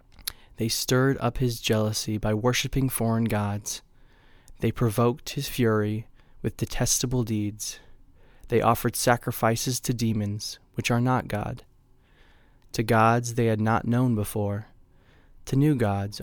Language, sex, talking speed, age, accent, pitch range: English, male, 130 wpm, 20-39, American, 105-120 Hz